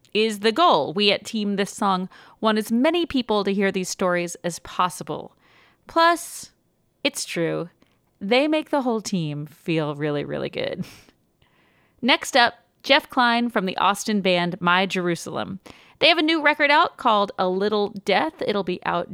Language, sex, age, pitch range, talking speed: English, female, 40-59, 180-245 Hz, 165 wpm